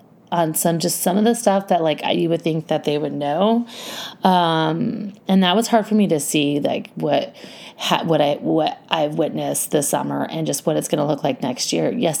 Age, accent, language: 30-49, American, English